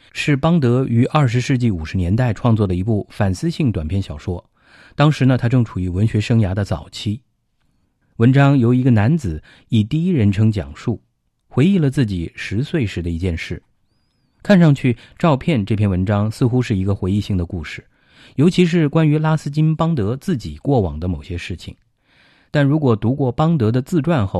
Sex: male